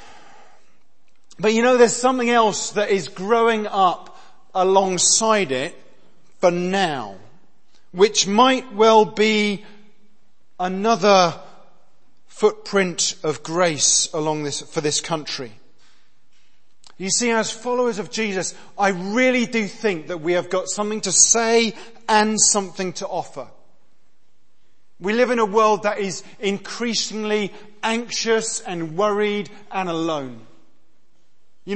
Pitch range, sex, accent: 185-225 Hz, male, British